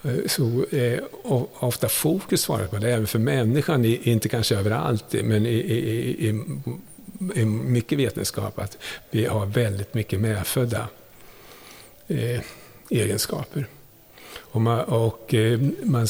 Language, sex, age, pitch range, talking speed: Swedish, male, 50-69, 110-130 Hz, 125 wpm